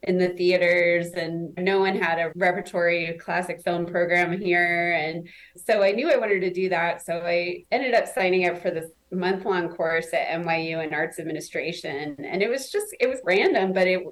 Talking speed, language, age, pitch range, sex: 195 wpm, English, 20-39, 180-210 Hz, female